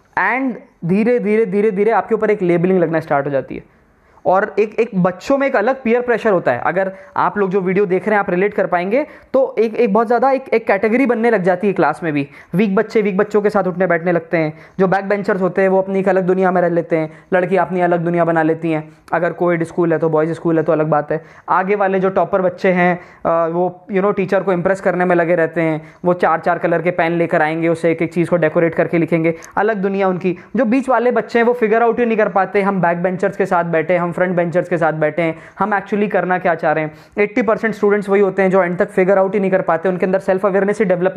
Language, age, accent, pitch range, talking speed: Hindi, 20-39, native, 175-225 Hz, 225 wpm